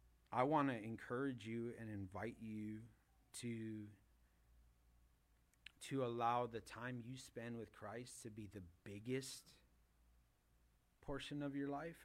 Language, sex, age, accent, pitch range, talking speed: English, male, 30-49, American, 95-135 Hz, 125 wpm